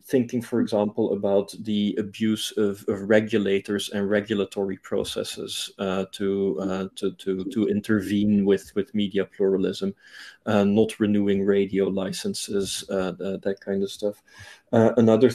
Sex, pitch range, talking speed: male, 100-110 Hz, 140 wpm